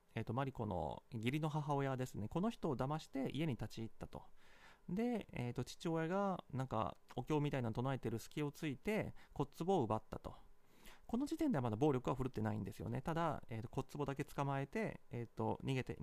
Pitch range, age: 120-170 Hz, 30-49